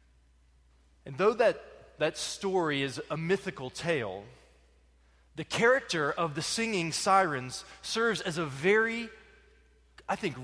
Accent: American